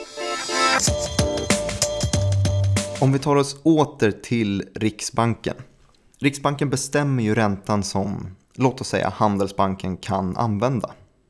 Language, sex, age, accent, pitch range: Swedish, male, 20-39, native, 100-130 Hz